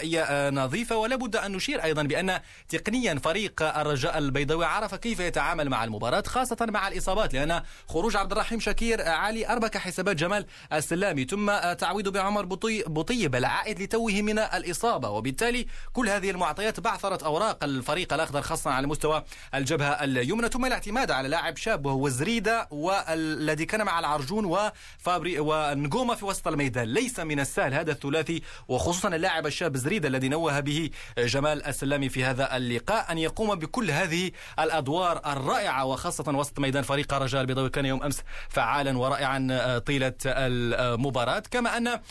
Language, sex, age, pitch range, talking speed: Arabic, male, 30-49, 140-195 Hz, 145 wpm